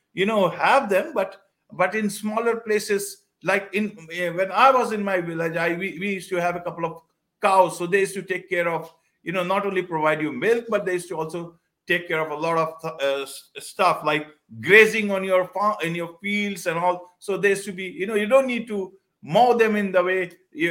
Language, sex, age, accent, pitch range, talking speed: English, male, 50-69, Indian, 155-210 Hz, 230 wpm